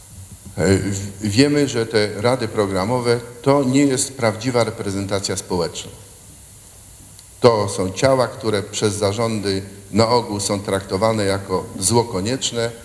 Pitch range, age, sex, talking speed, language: 95-120 Hz, 50-69, male, 105 wpm, Polish